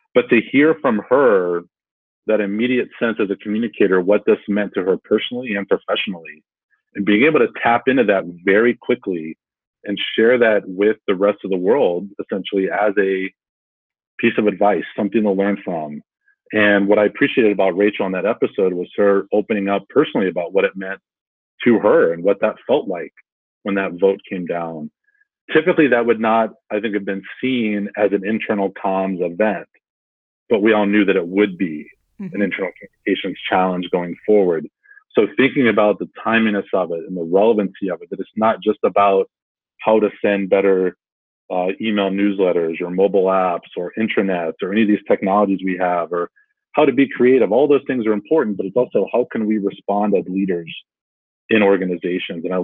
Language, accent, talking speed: English, American, 185 wpm